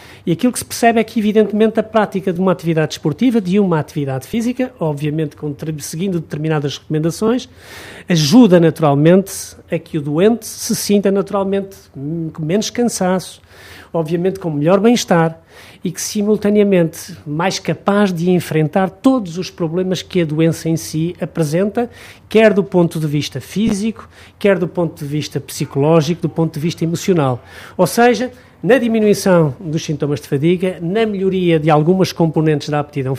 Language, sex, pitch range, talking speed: Portuguese, male, 150-190 Hz, 155 wpm